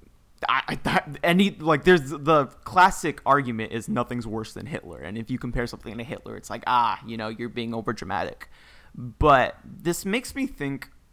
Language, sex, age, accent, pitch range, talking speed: English, male, 20-39, American, 115-155 Hz, 185 wpm